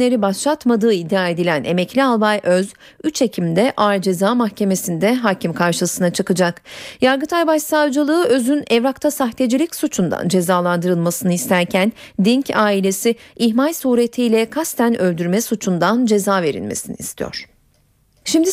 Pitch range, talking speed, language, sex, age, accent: 185-255 Hz, 105 wpm, Turkish, female, 40-59, native